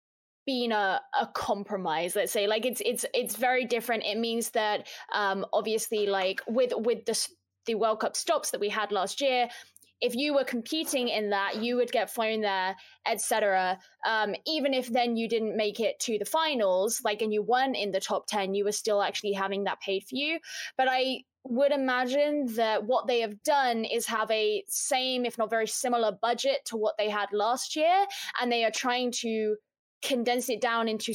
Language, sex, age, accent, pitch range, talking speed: English, female, 20-39, British, 215-275 Hz, 200 wpm